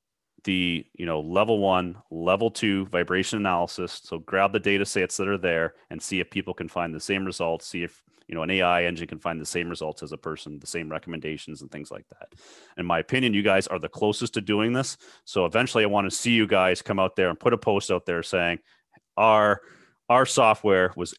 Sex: male